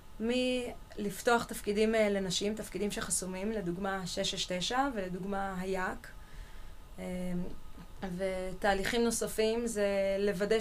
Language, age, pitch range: Hebrew, 20-39, 200-230 Hz